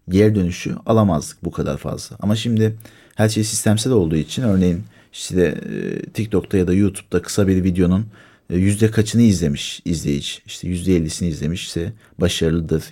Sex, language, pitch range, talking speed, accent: male, Turkish, 90-110 Hz, 155 wpm, native